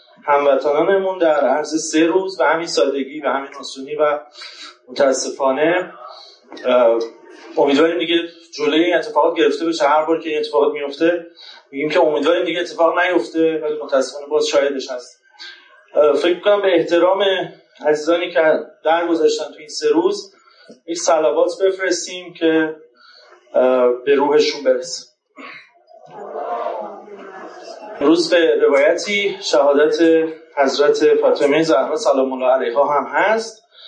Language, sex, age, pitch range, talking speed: Persian, male, 30-49, 145-200 Hz, 115 wpm